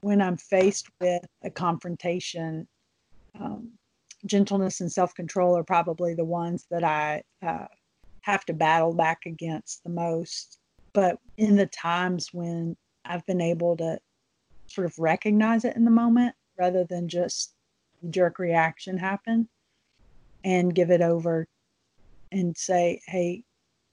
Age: 40-59